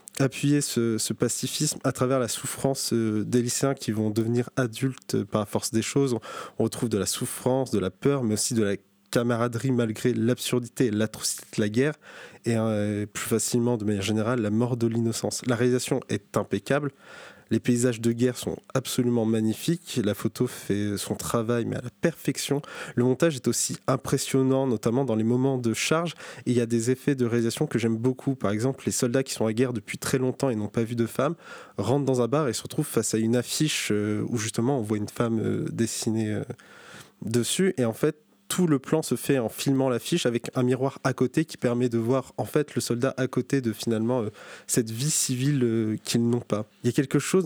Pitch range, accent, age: 115-135 Hz, French, 20-39